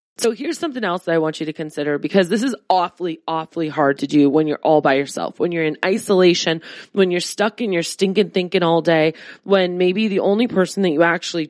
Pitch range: 165-215 Hz